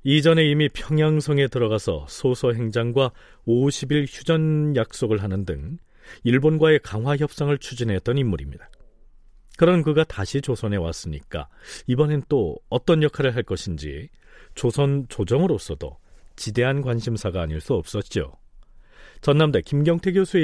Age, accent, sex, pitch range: 40-59, native, male, 100-145 Hz